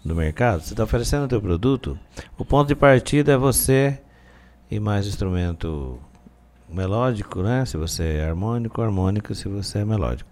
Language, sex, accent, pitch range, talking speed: Portuguese, male, Brazilian, 80-115 Hz, 165 wpm